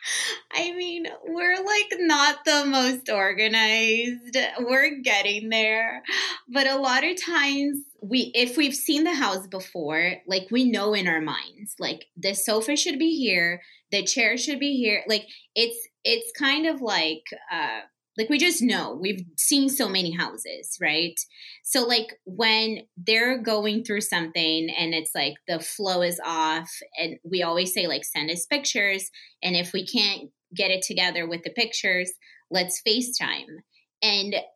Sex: female